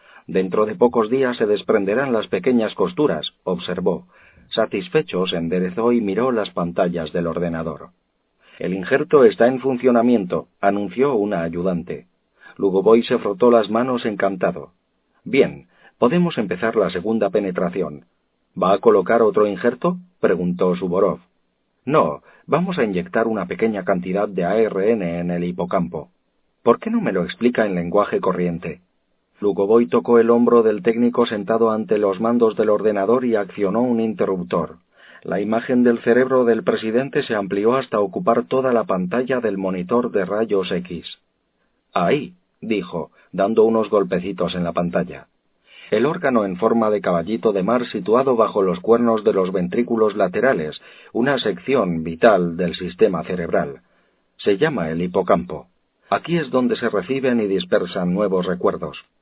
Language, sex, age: Spanish, male, 40-59